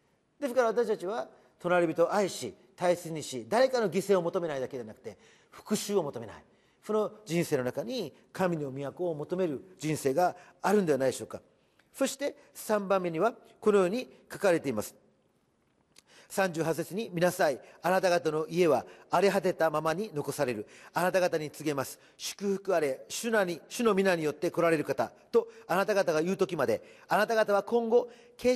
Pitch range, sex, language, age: 175-230 Hz, male, Japanese, 40-59